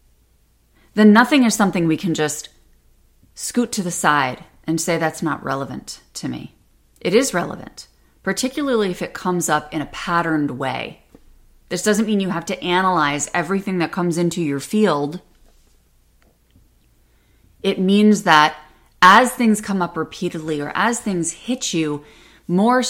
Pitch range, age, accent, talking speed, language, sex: 125-190 Hz, 30-49, American, 150 wpm, English, female